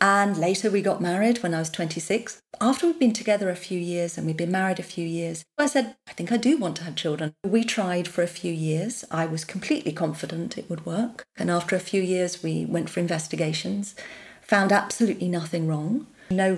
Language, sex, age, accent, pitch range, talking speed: English, female, 40-59, British, 170-225 Hz, 215 wpm